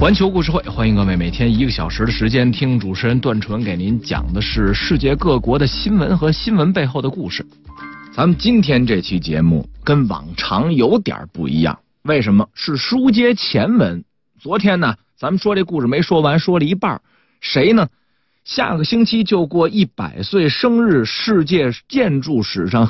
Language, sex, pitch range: Chinese, male, 125-195 Hz